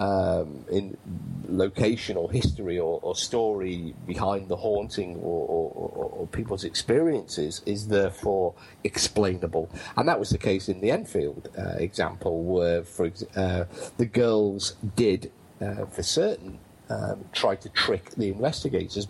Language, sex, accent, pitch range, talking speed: English, male, British, 95-125 Hz, 150 wpm